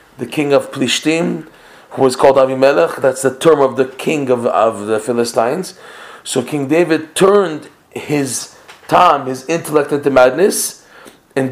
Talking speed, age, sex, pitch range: 150 wpm, 30-49, male, 125-150 Hz